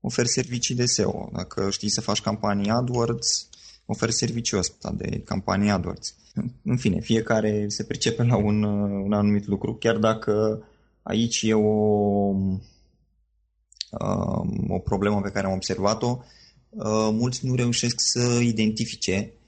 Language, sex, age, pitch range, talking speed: Romanian, male, 20-39, 100-115 Hz, 130 wpm